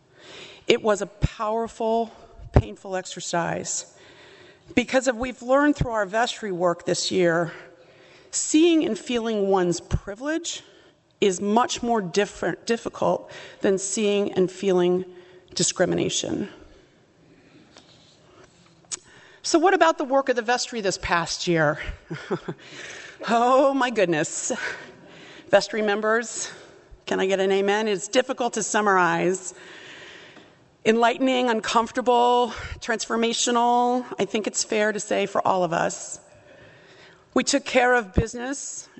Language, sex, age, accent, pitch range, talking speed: English, female, 40-59, American, 190-245 Hz, 115 wpm